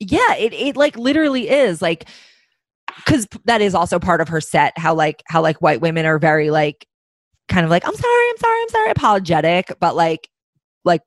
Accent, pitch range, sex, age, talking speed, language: American, 160-205 Hz, female, 20-39, 200 wpm, English